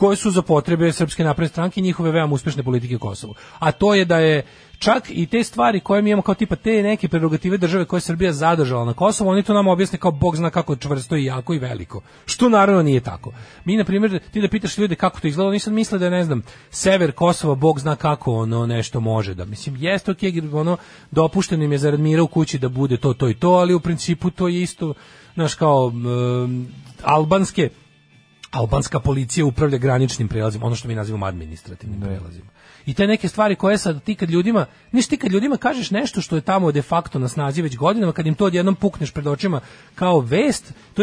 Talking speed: 220 wpm